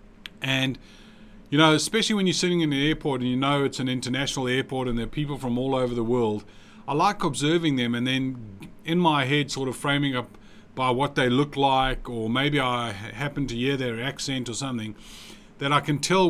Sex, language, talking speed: male, English, 215 wpm